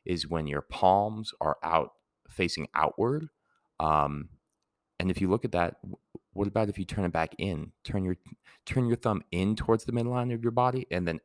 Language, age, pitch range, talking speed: English, 30-49, 75-95 Hz, 195 wpm